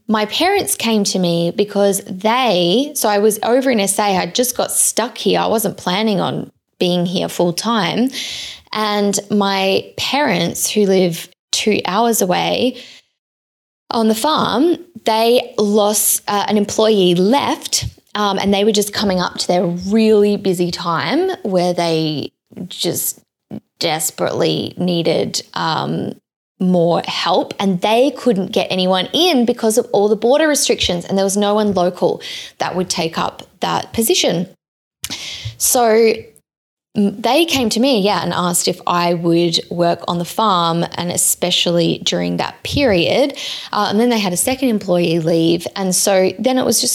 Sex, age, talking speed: female, 20-39, 155 wpm